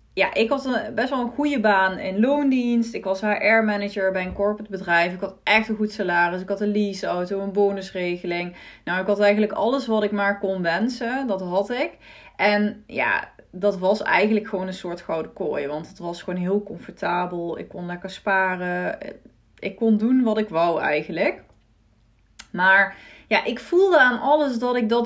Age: 20-39